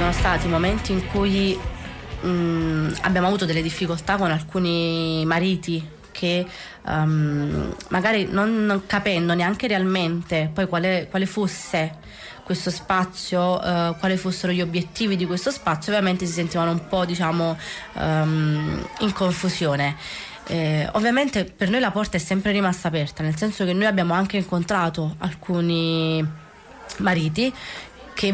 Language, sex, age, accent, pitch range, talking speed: Italian, female, 20-39, native, 170-205 Hz, 135 wpm